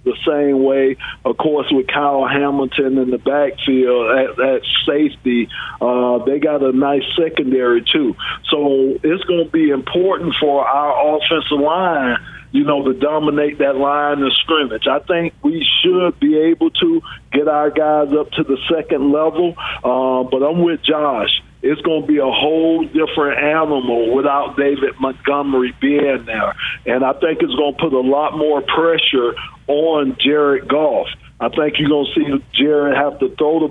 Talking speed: 175 wpm